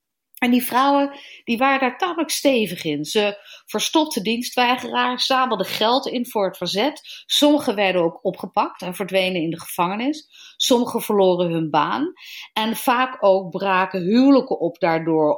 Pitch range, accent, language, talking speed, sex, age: 175-240 Hz, Dutch, Dutch, 150 wpm, female, 40-59